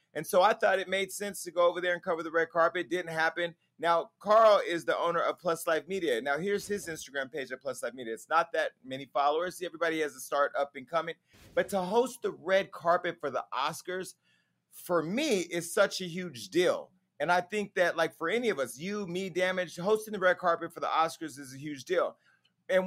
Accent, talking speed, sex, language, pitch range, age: American, 230 wpm, male, English, 150-190 Hz, 30-49